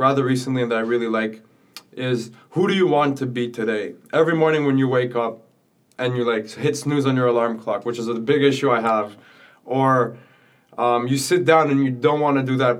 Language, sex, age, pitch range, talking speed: English, male, 20-39, 120-140 Hz, 225 wpm